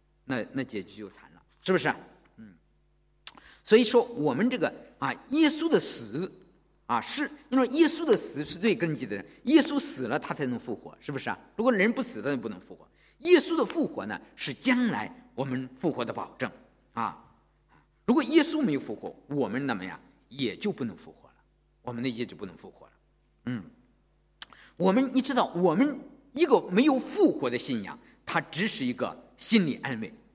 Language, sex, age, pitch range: English, male, 50-69, 160-265 Hz